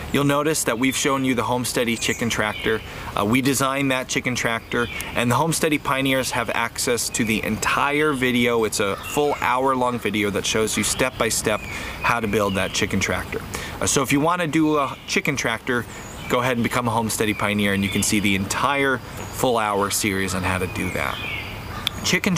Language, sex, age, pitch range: English, male, 30-49, 105-135 Hz